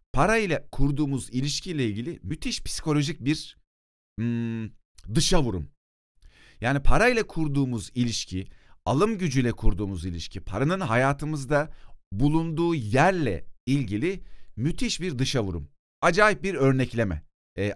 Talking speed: 100 wpm